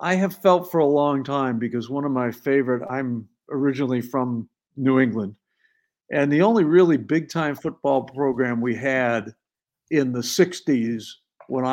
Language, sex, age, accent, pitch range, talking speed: English, male, 60-79, American, 120-150 Hz, 155 wpm